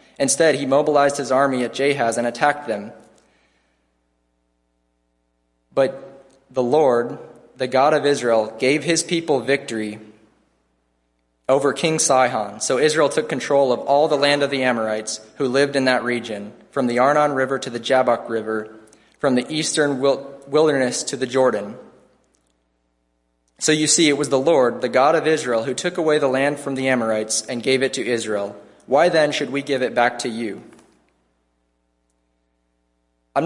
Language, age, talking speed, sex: English, 20-39, 160 wpm, male